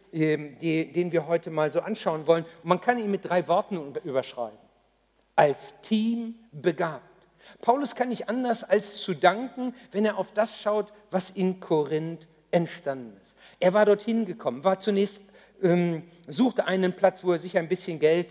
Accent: German